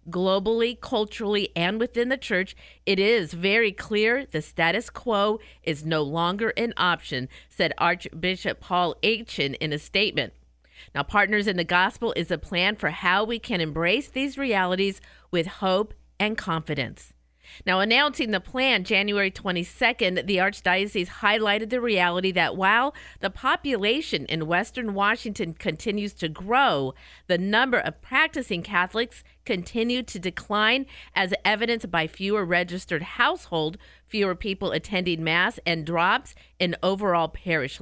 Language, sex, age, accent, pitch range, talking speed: English, female, 50-69, American, 170-225 Hz, 140 wpm